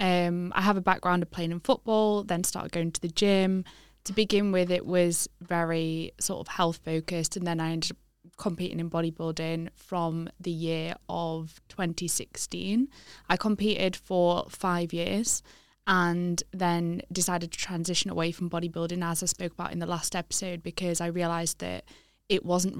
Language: English